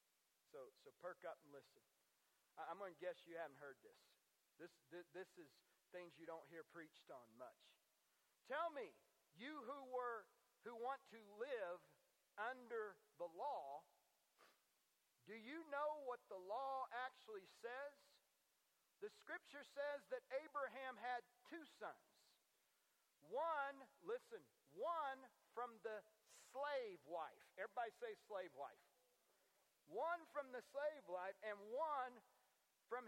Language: English